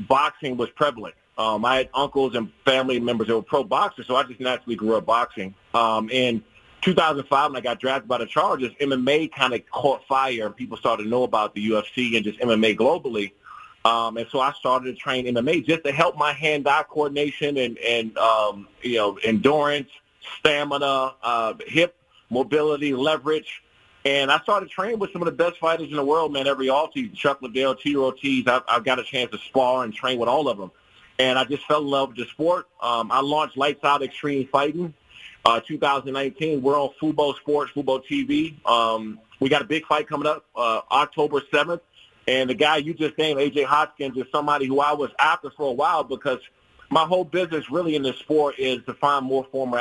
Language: English